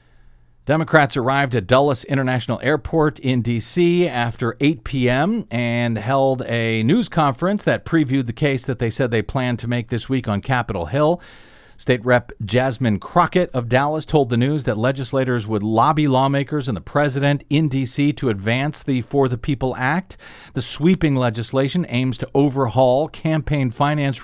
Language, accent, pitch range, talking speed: English, American, 120-160 Hz, 165 wpm